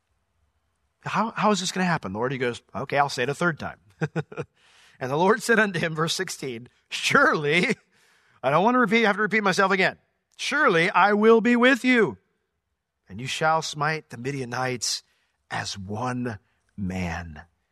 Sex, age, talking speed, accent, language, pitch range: male, 40-59, 180 wpm, American, English, 105-170 Hz